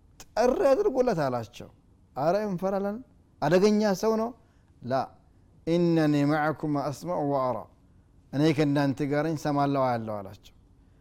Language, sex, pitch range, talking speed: Amharic, male, 115-160 Hz, 115 wpm